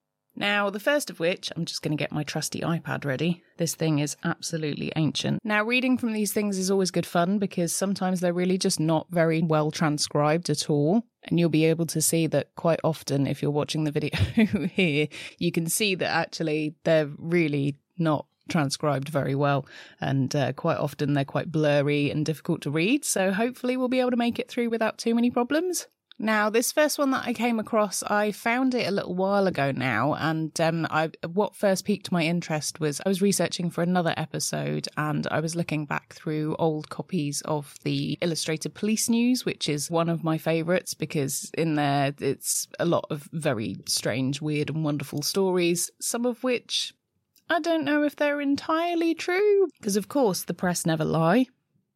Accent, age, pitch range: British, 20-39, 150-210 Hz